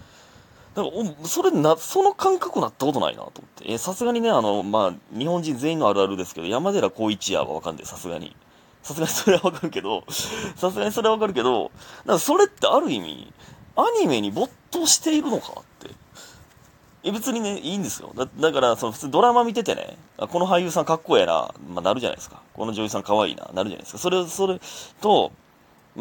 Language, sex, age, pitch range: Japanese, male, 30-49, 155-255 Hz